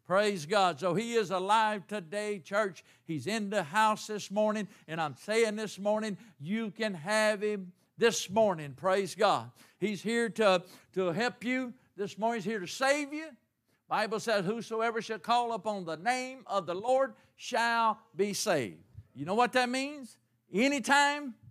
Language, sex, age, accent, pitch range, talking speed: English, male, 50-69, American, 185-240 Hz, 165 wpm